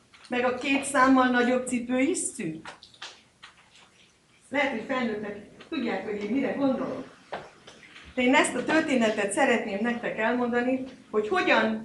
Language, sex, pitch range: Hungarian, female, 215-275 Hz